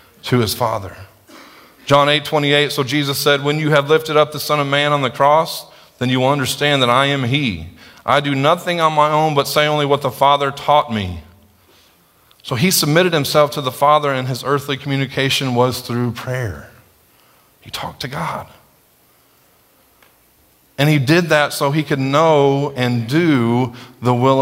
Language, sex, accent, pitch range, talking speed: English, male, American, 105-145 Hz, 180 wpm